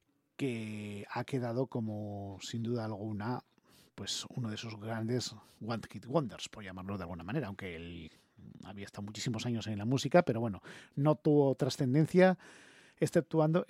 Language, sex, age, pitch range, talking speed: English, male, 40-59, 110-140 Hz, 155 wpm